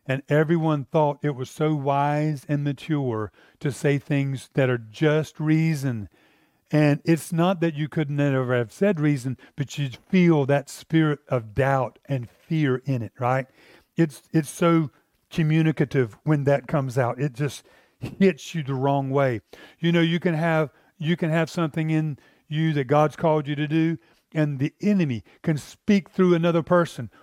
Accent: American